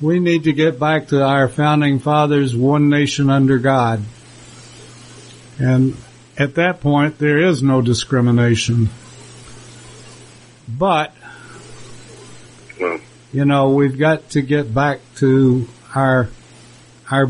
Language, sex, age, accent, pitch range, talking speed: English, male, 60-79, American, 125-155 Hz, 110 wpm